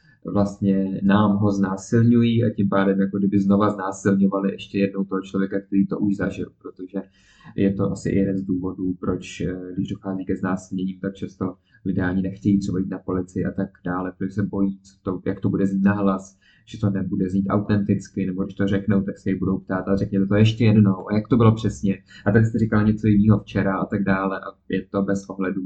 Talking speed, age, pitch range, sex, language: 215 wpm, 20-39, 95-100 Hz, male, Czech